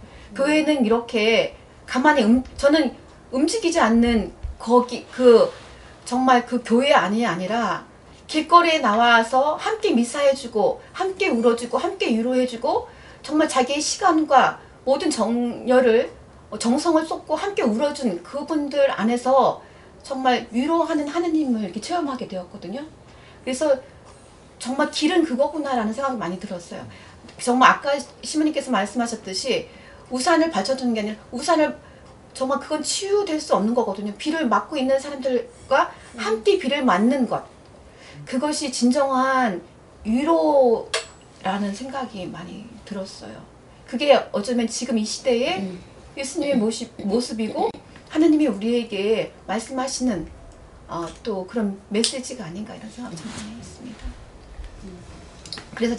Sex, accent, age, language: female, native, 40-59, Korean